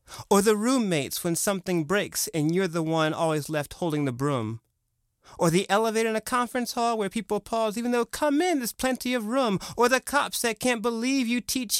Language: English